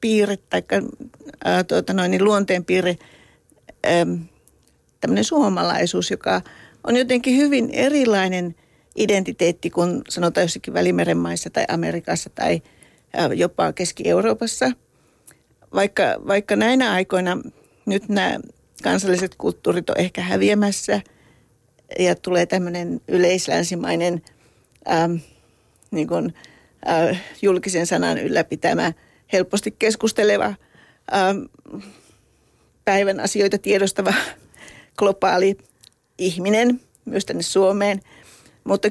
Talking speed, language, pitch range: 85 wpm, Finnish, 175-215 Hz